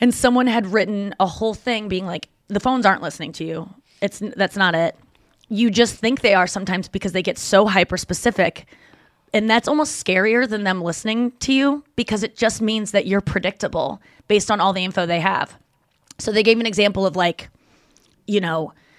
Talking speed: 195 wpm